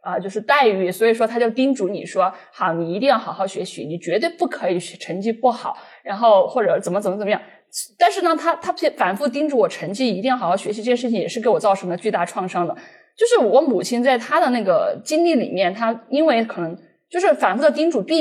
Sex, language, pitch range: female, Chinese, 200-280 Hz